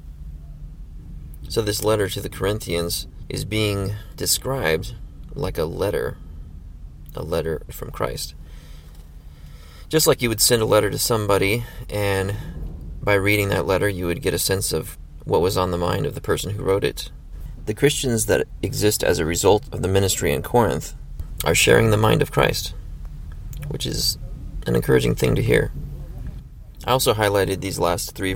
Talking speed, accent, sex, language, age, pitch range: 165 wpm, American, male, English, 30-49, 75-110 Hz